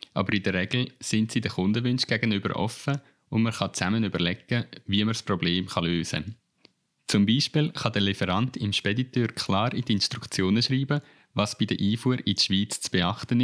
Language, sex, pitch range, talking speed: German, male, 100-125 Hz, 190 wpm